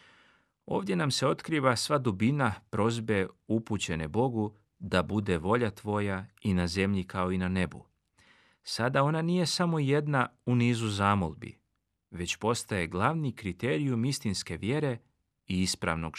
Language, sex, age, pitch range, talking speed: Croatian, male, 40-59, 95-130 Hz, 135 wpm